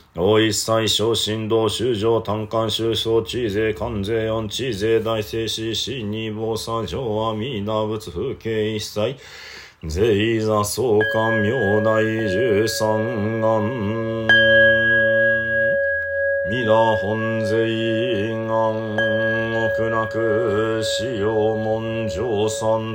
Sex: male